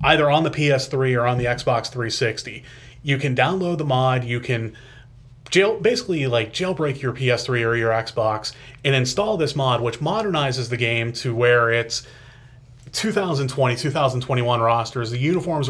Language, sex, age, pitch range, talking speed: English, male, 30-49, 120-145 Hz, 155 wpm